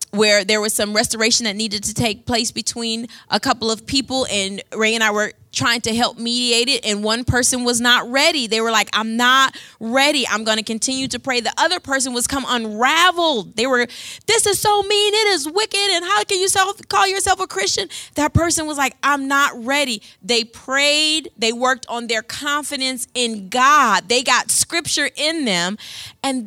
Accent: American